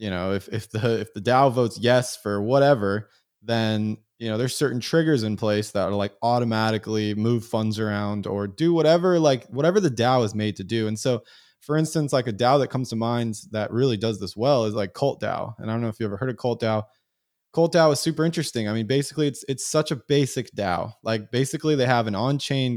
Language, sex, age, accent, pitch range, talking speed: English, male, 20-39, American, 105-130 Hz, 235 wpm